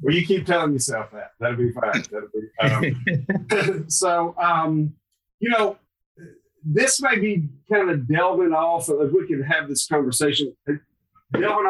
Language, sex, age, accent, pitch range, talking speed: English, male, 50-69, American, 120-160 Hz, 155 wpm